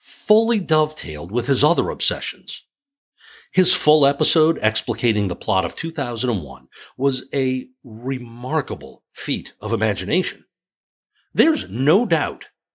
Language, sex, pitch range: English, male, 95-135 Hz